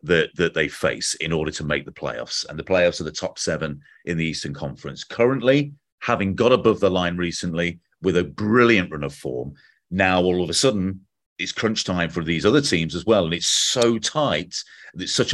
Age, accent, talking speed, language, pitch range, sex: 40-59, British, 210 wpm, English, 95-125 Hz, male